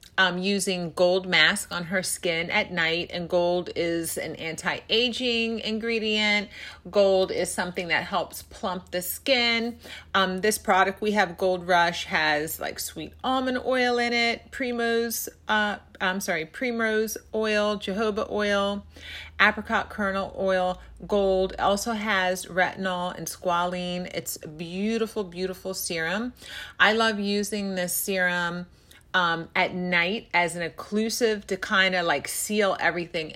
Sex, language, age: female, English, 30-49